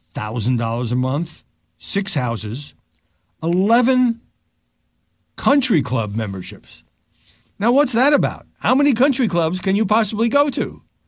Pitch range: 95-140 Hz